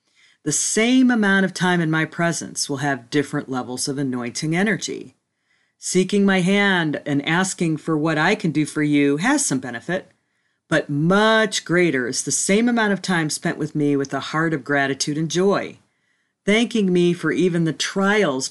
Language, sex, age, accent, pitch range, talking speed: English, female, 40-59, American, 140-185 Hz, 180 wpm